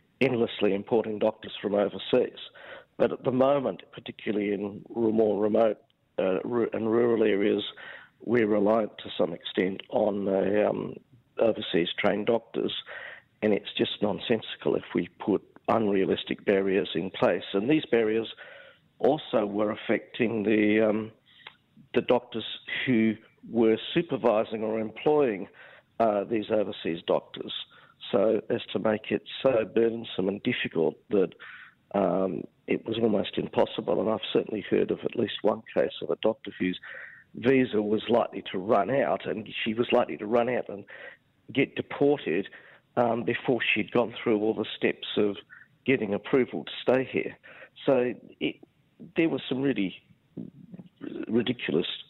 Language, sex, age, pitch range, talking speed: English, male, 50-69, 105-120 Hz, 140 wpm